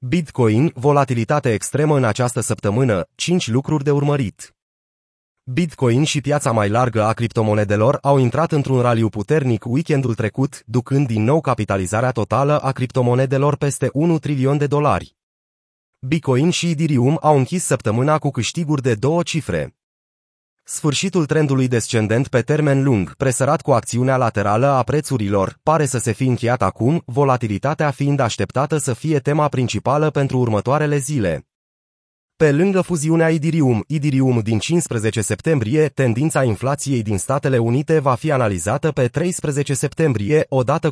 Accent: native